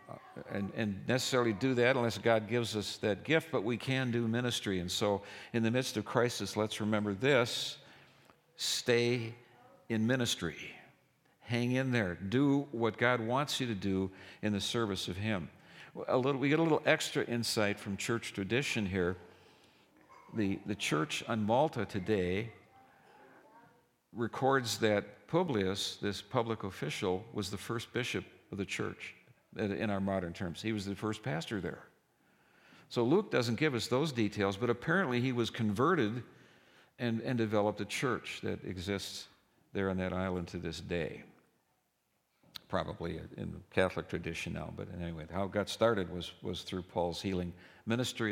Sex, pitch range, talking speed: male, 100-120 Hz, 160 wpm